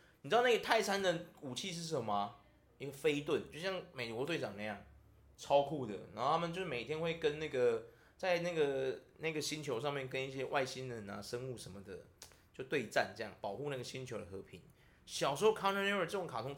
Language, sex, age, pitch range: Chinese, male, 20-39, 130-185 Hz